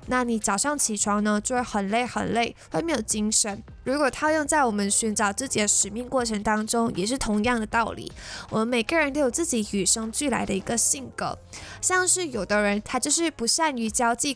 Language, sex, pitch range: Chinese, female, 210-280 Hz